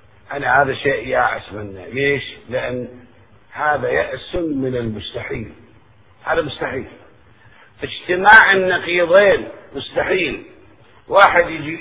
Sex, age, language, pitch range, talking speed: male, 50-69, Arabic, 115-175 Hz, 90 wpm